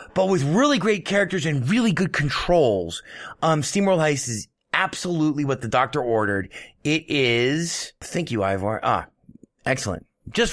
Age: 30-49